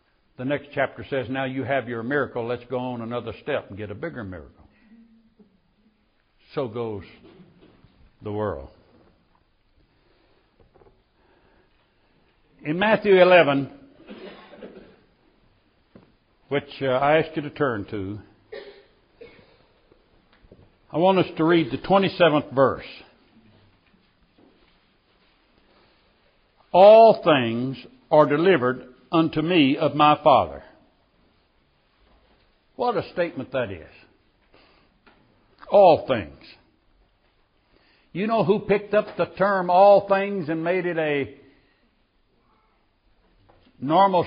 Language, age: English, 60-79